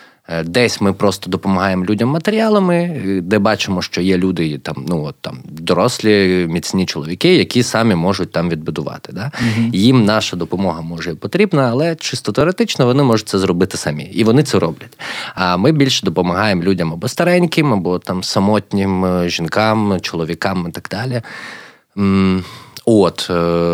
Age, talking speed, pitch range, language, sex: 20-39, 145 wpm, 85-120 Hz, Ukrainian, male